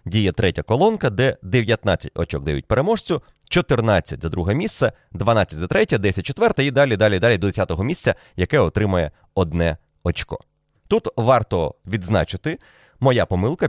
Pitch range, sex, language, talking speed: 90-120 Hz, male, Ukrainian, 150 wpm